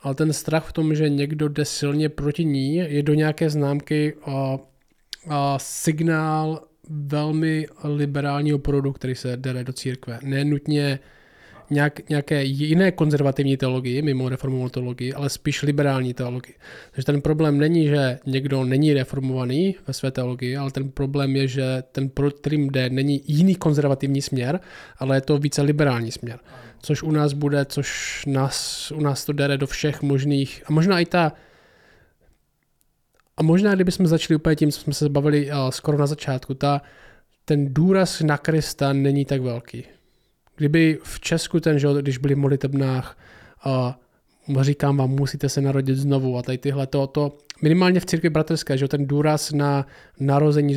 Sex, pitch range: male, 135-150 Hz